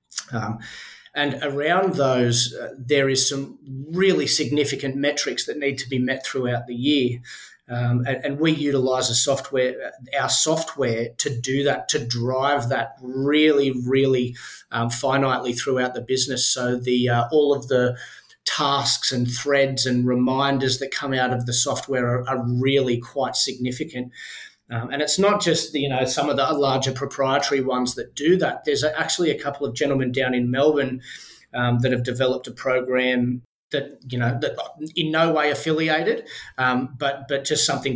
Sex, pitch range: male, 125-145 Hz